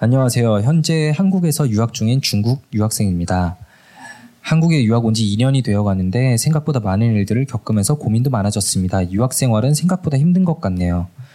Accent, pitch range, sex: native, 105-145 Hz, male